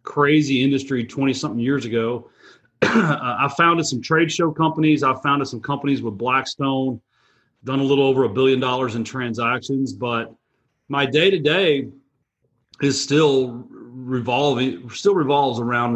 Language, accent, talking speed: English, American, 130 wpm